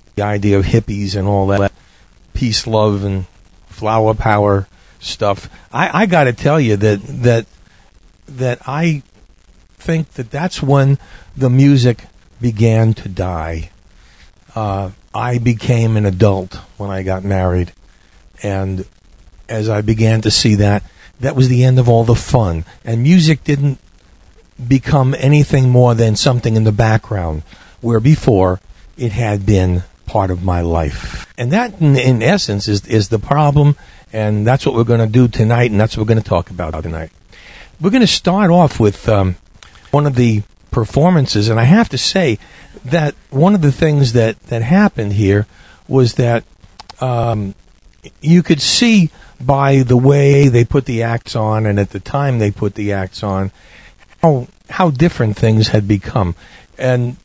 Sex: male